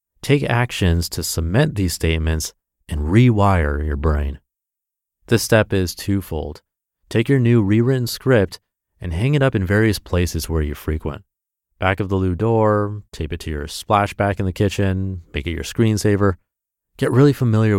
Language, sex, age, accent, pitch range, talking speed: English, male, 30-49, American, 85-110 Hz, 165 wpm